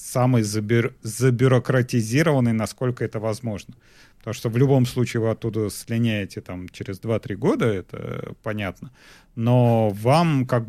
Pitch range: 105-125 Hz